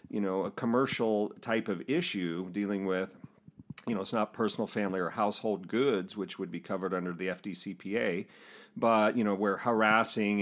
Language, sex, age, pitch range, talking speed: English, male, 40-59, 95-115 Hz, 175 wpm